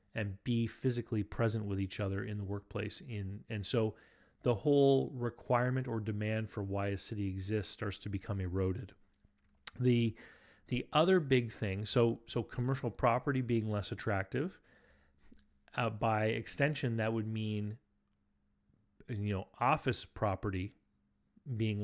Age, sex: 30-49, male